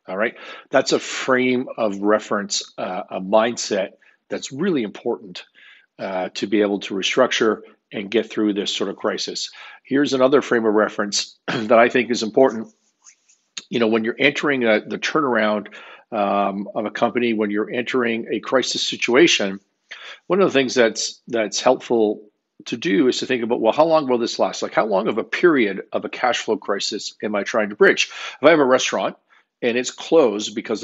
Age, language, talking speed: 50-69, English, 185 wpm